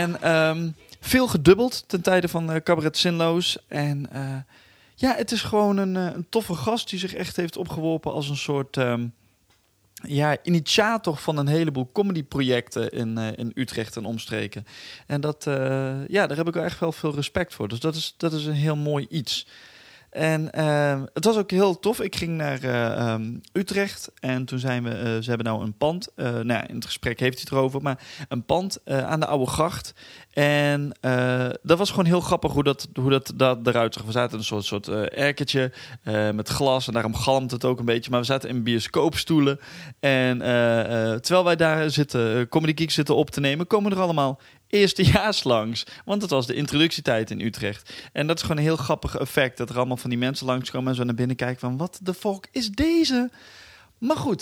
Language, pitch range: Dutch, 125-170 Hz